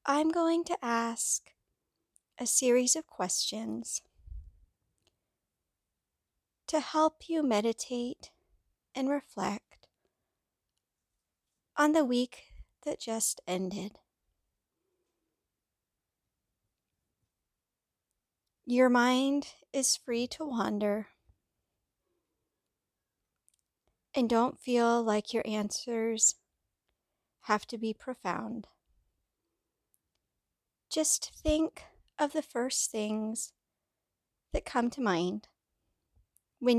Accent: American